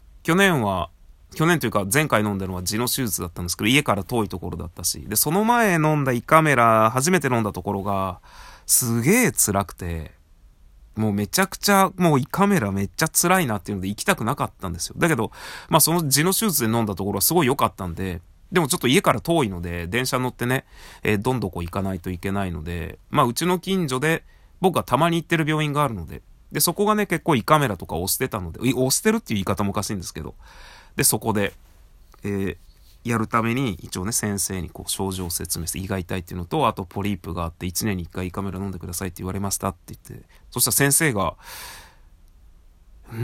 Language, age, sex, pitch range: Japanese, 30-49, male, 90-145 Hz